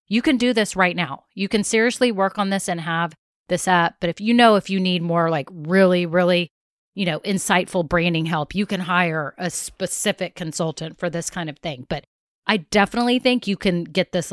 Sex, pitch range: female, 175-215 Hz